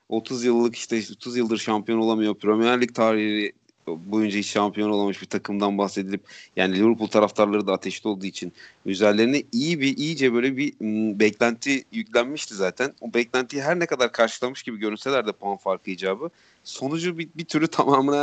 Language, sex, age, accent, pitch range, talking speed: Turkish, male, 40-59, native, 100-125 Hz, 165 wpm